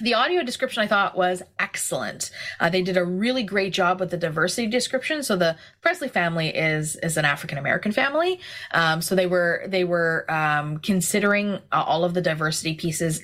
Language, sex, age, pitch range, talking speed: English, female, 20-39, 160-220 Hz, 190 wpm